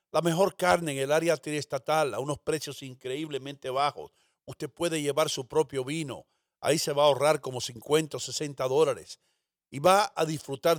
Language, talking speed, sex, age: English, 180 wpm, male, 50-69